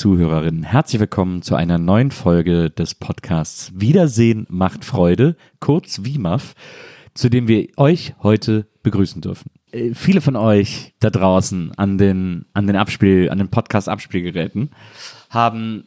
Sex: male